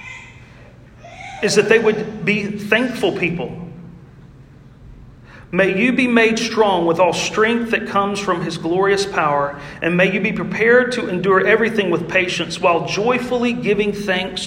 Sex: male